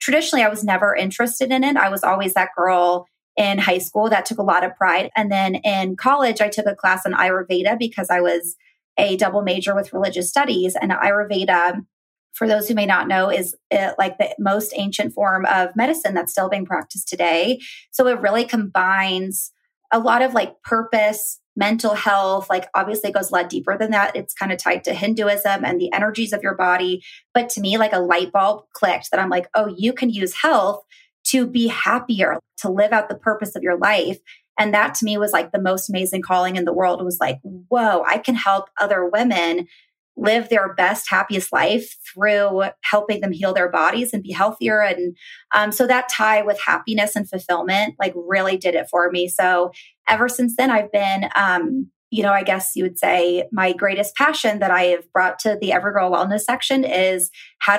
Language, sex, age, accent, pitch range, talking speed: English, female, 20-39, American, 185-220 Hz, 205 wpm